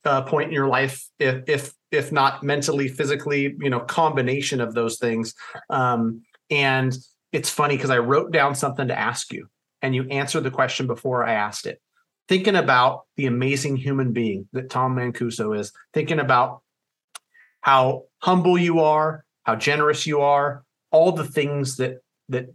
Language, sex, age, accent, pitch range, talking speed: English, male, 30-49, American, 125-155 Hz, 170 wpm